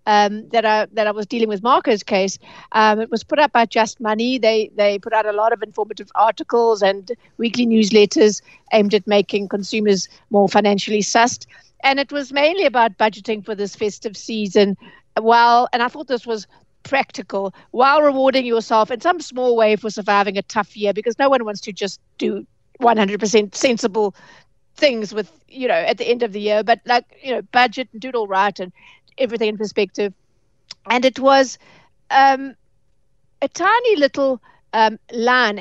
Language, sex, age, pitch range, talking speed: English, female, 60-79, 210-240 Hz, 185 wpm